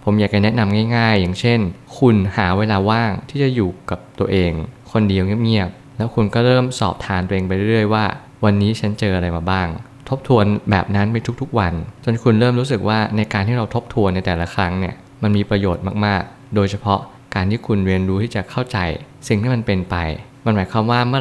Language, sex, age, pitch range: Thai, male, 20-39, 95-115 Hz